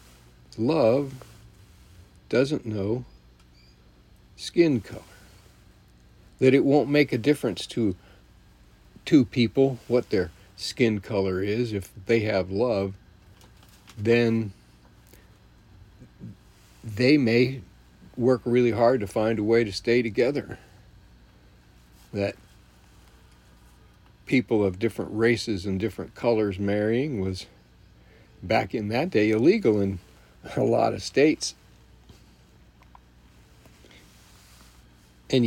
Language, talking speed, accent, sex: English, 95 wpm, American, male